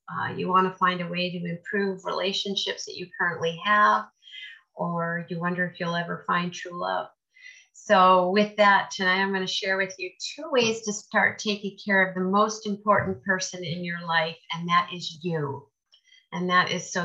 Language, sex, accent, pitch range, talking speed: English, female, American, 165-205 Hz, 195 wpm